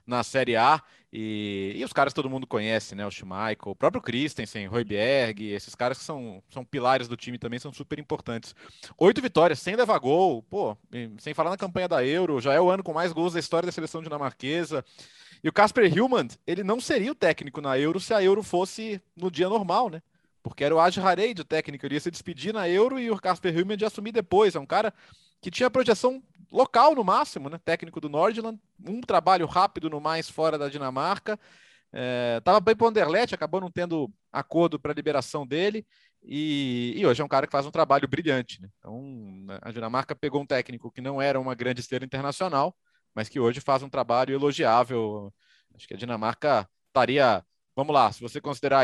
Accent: Brazilian